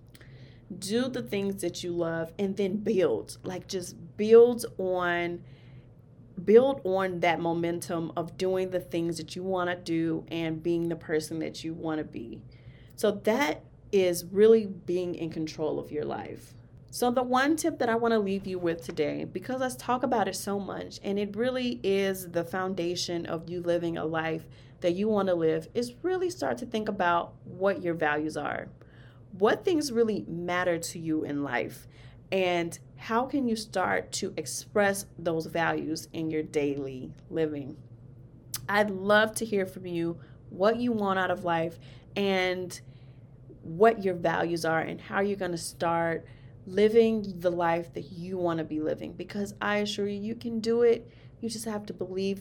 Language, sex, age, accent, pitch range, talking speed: English, female, 30-49, American, 155-200 Hz, 180 wpm